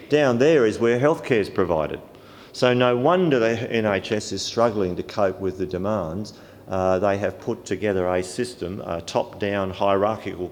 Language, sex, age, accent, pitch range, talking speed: English, male, 50-69, Australian, 90-115 Hz, 165 wpm